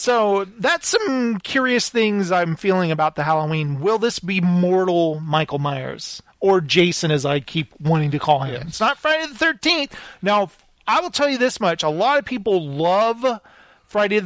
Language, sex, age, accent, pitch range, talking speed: English, male, 30-49, American, 160-205 Hz, 180 wpm